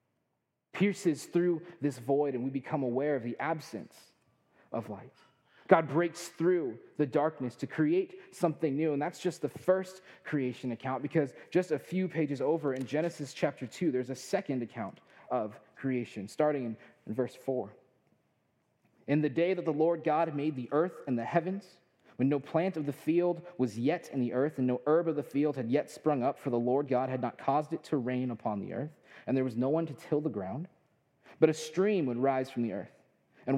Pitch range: 130-165 Hz